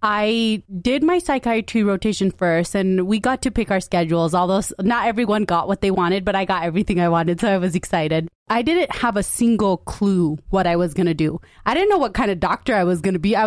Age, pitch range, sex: 20-39, 175-225 Hz, female